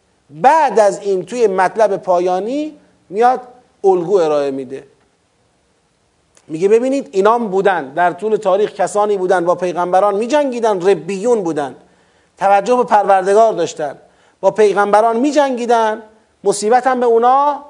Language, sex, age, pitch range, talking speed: Persian, male, 30-49, 185-250 Hz, 115 wpm